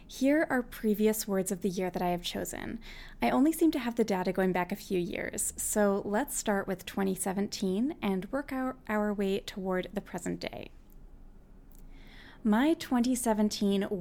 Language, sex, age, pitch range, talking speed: English, female, 20-39, 185-225 Hz, 165 wpm